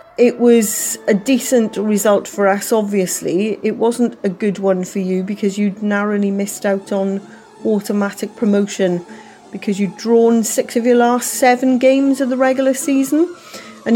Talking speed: 160 wpm